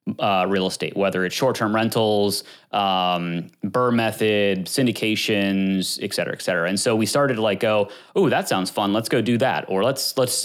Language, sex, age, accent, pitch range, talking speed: English, male, 30-49, American, 100-115 Hz, 190 wpm